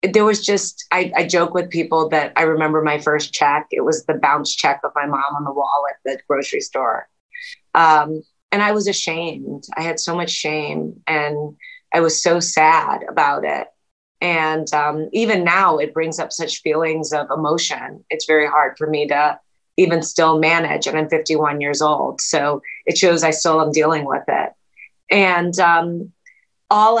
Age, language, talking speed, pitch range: 30-49, English, 185 wpm, 155-190 Hz